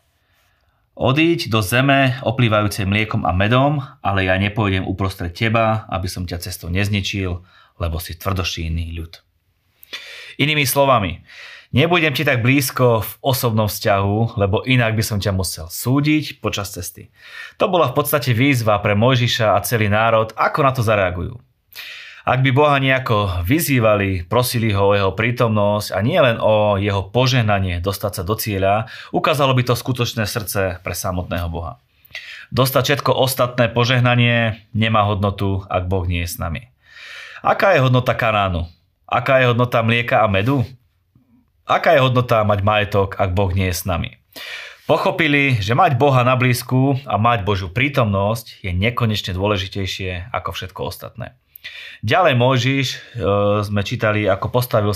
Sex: male